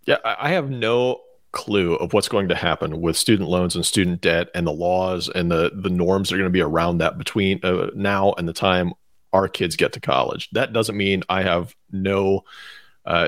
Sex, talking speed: male, 215 wpm